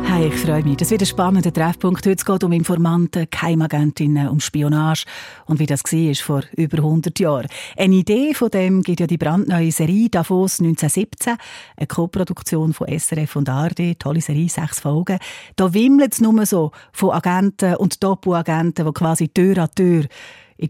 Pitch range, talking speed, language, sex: 150-190 Hz, 180 wpm, German, female